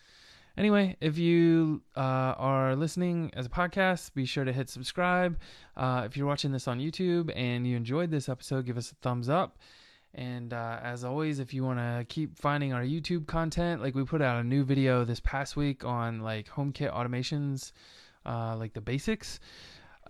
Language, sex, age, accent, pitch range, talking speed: English, male, 20-39, American, 120-145 Hz, 190 wpm